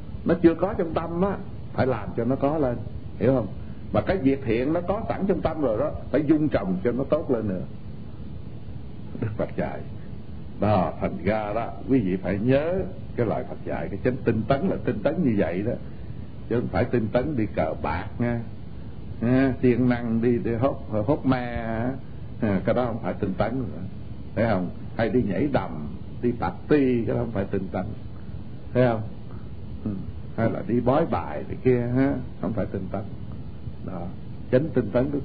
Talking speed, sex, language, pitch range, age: 200 wpm, male, Vietnamese, 100-130 Hz, 60-79